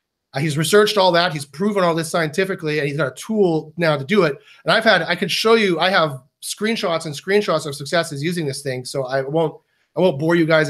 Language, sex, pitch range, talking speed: English, male, 160-205 Hz, 225 wpm